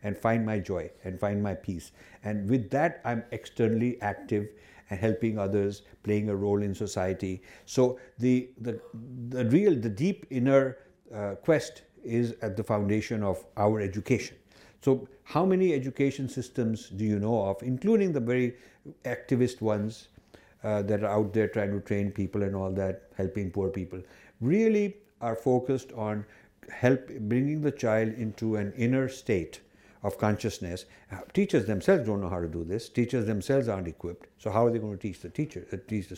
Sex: male